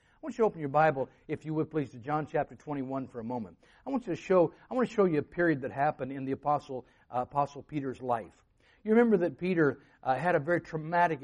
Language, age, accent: English, 50-69, American